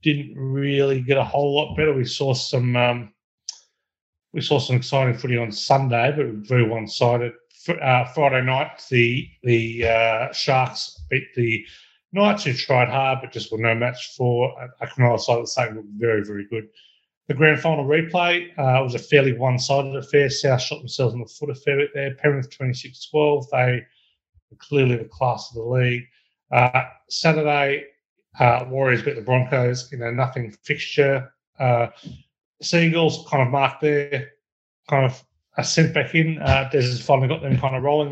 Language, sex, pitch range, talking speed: English, male, 120-140 Hz, 180 wpm